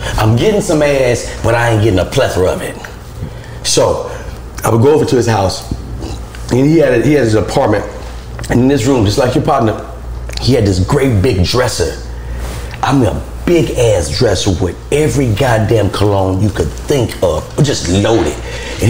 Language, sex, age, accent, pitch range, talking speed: English, male, 30-49, American, 75-110 Hz, 185 wpm